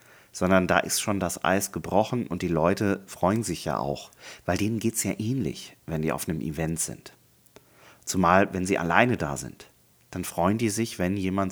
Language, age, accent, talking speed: German, 30-49, German, 200 wpm